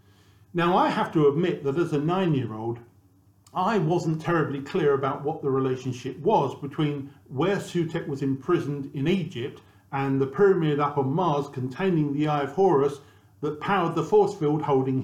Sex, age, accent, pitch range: male, 50-69, British, 120-170 Hz